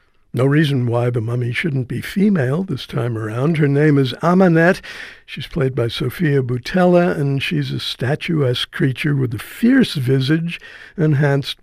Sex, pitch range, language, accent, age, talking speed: male, 130-160 Hz, English, American, 60-79, 155 wpm